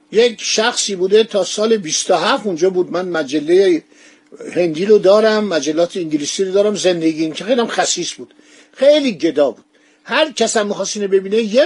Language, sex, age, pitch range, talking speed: Persian, male, 50-69, 180-235 Hz, 165 wpm